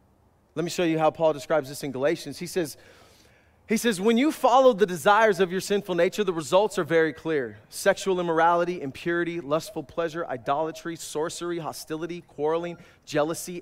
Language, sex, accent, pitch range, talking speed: English, male, American, 155-225 Hz, 165 wpm